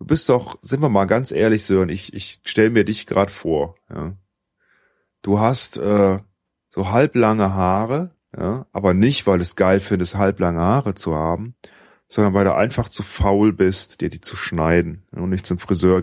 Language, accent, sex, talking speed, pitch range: German, German, male, 185 wpm, 90-105 Hz